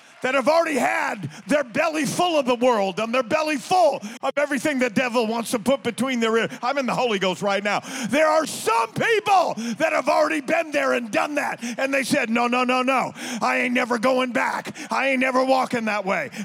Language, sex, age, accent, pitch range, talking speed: English, male, 40-59, American, 240-310 Hz, 225 wpm